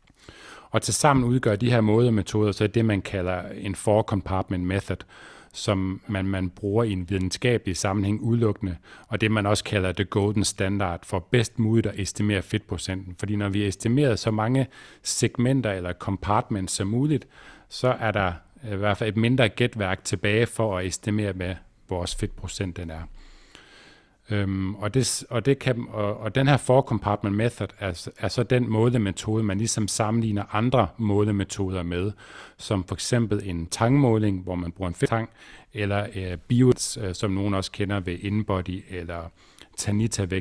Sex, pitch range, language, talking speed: male, 95-110 Hz, Danish, 170 wpm